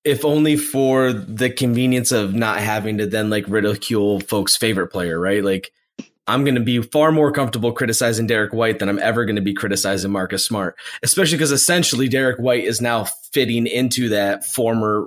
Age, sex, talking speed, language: 20-39, male, 180 wpm, English